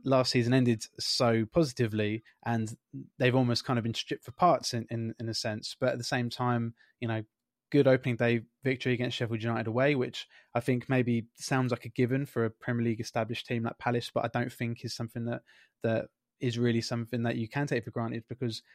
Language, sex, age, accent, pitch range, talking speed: English, male, 20-39, British, 115-125 Hz, 220 wpm